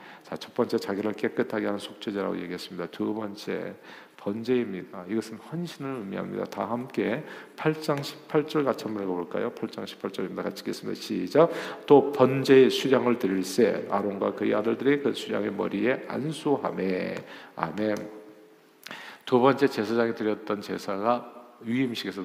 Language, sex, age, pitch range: Korean, male, 50-69, 105-135 Hz